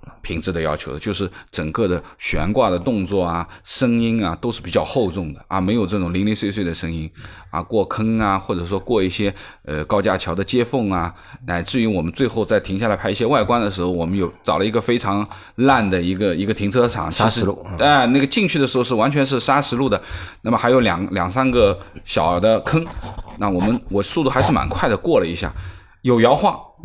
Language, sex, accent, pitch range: Chinese, male, native, 90-120 Hz